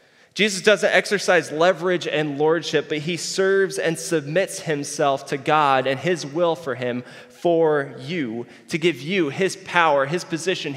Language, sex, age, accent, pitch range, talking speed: English, male, 20-39, American, 125-165 Hz, 155 wpm